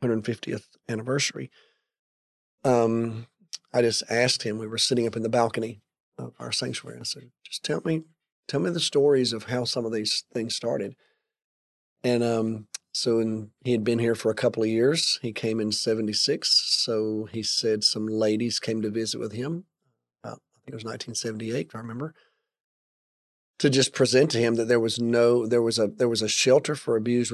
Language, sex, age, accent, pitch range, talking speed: English, male, 40-59, American, 110-130 Hz, 190 wpm